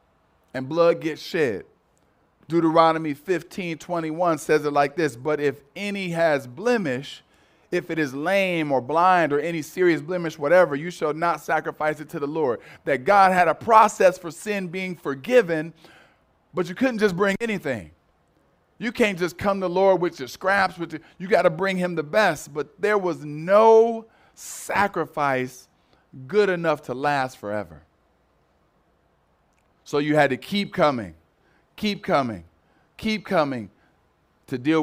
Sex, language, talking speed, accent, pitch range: male, English, 160 wpm, American, 125-180 Hz